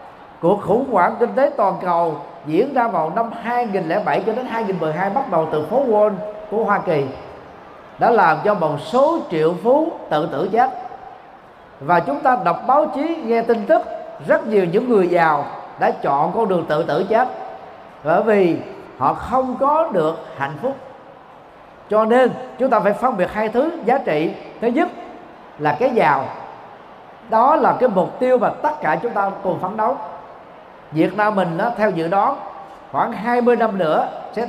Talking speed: 180 wpm